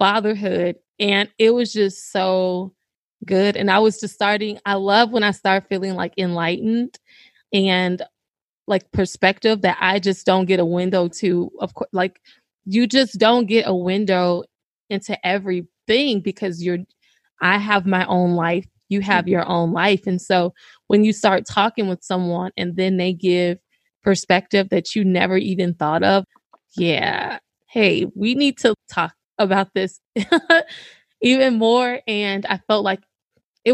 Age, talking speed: 20-39, 155 wpm